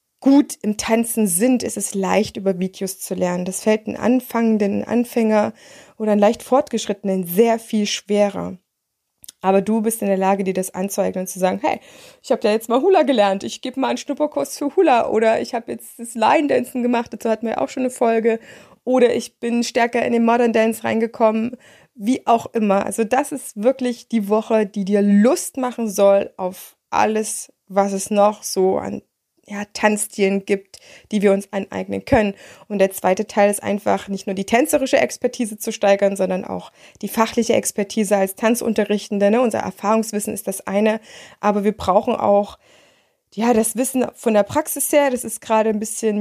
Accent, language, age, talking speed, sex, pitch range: German, German, 20-39, 185 wpm, female, 200-240 Hz